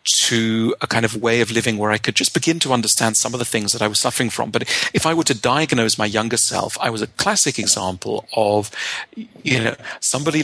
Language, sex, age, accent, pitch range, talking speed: English, male, 40-59, British, 110-130 Hz, 235 wpm